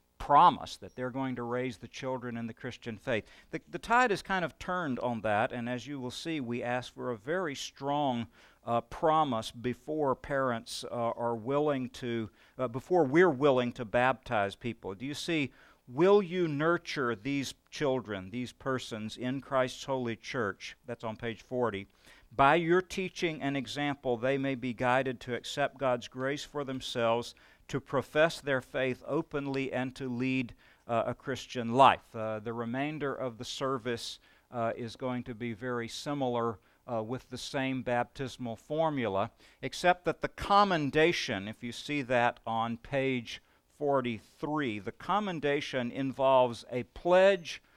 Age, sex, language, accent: 50-69, male, English, American